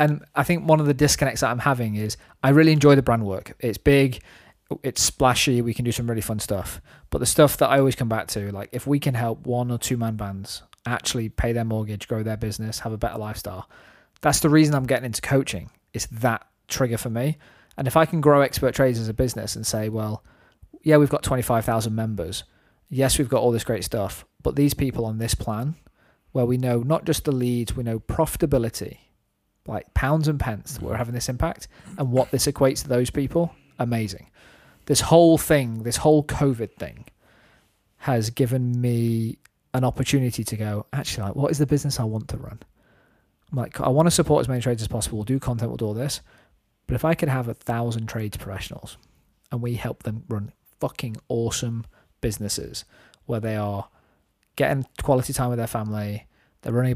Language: English